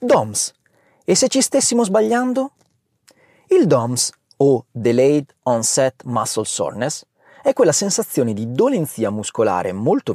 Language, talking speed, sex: Italian, 120 wpm, male